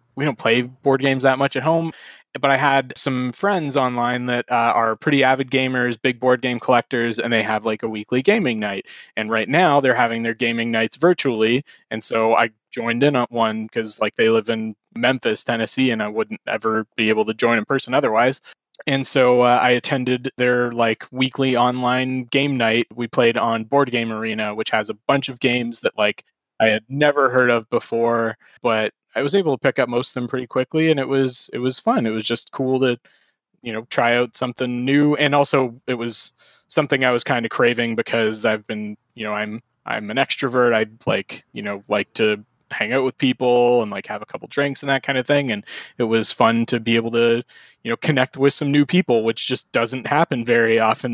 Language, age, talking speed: English, 20-39, 220 wpm